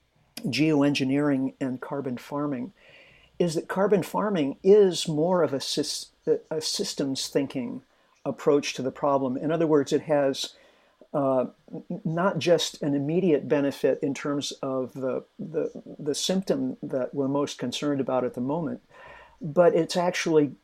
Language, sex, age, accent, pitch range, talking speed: English, male, 50-69, American, 135-160 Hz, 140 wpm